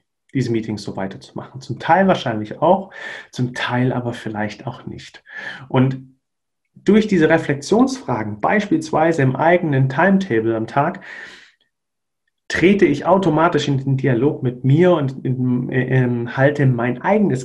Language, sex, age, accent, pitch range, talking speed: German, male, 40-59, German, 120-150 Hz, 125 wpm